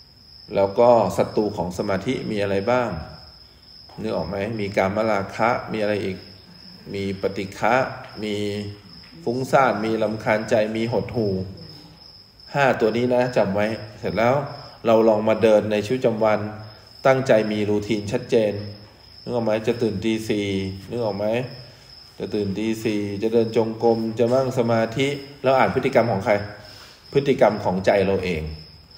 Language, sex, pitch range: English, male, 100-125 Hz